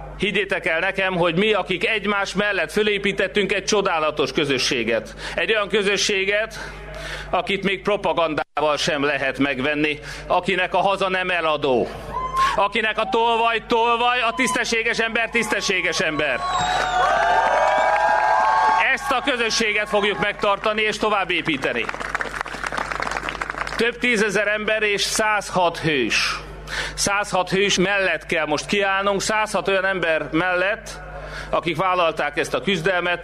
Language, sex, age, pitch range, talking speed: Hungarian, male, 30-49, 170-210 Hz, 115 wpm